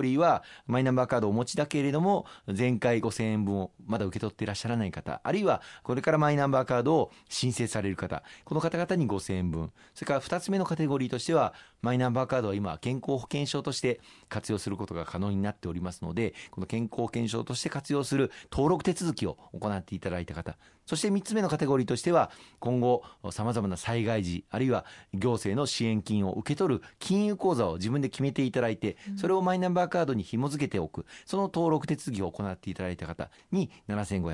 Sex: male